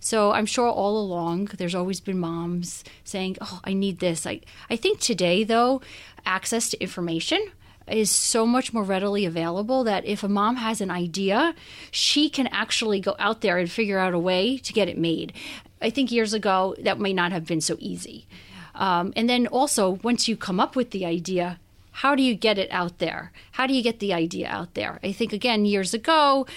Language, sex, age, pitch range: English, female, 30-49, 185-230 Hz